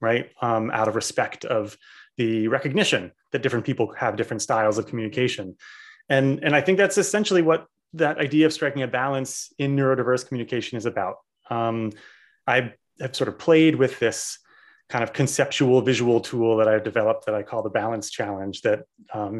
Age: 30-49